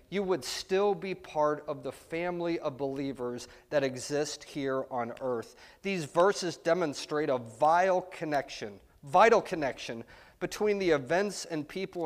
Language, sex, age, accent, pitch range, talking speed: English, male, 30-49, American, 130-175 Hz, 140 wpm